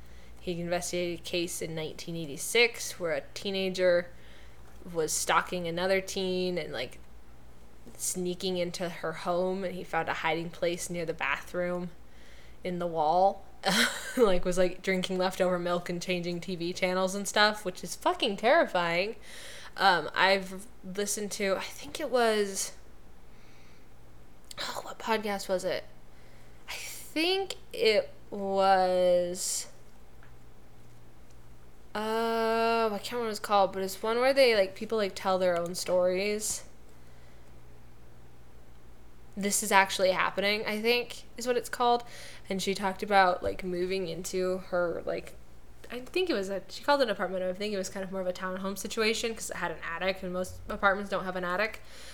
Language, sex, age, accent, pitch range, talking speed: English, female, 10-29, American, 165-200 Hz, 155 wpm